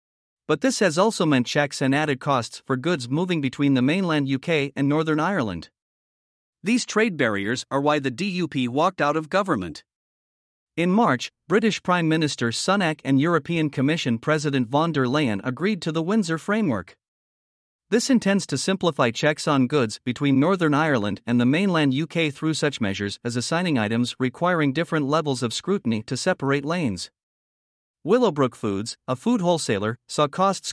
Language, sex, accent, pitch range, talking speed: English, male, American, 130-175 Hz, 160 wpm